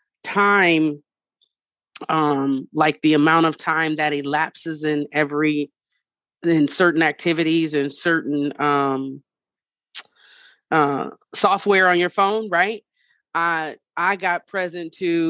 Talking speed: 110 wpm